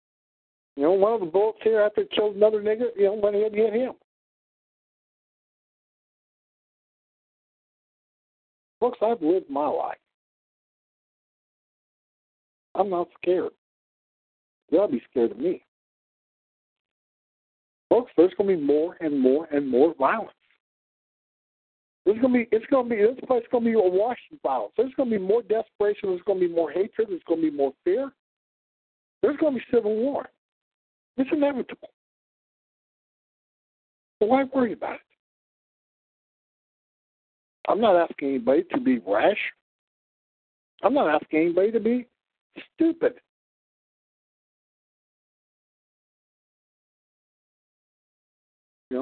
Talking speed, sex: 120 wpm, male